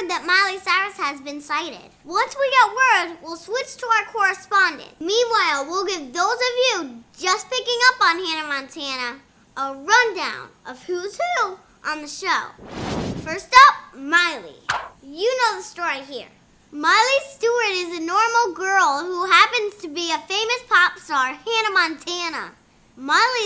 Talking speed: 155 wpm